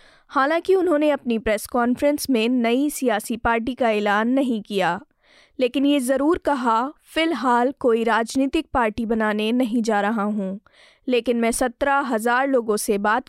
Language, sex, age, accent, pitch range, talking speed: Hindi, female, 20-39, native, 225-275 Hz, 150 wpm